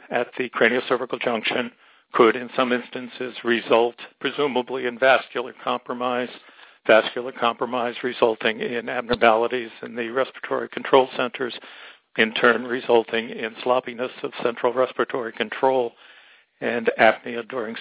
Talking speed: 120 wpm